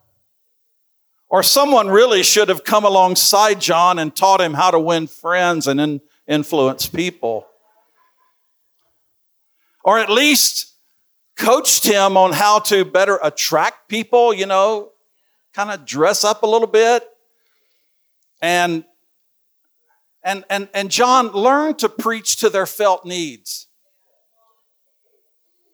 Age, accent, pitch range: 50-69, American, 185-255 Hz